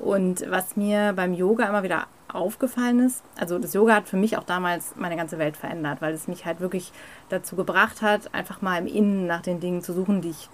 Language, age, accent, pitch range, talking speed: German, 30-49, German, 175-220 Hz, 230 wpm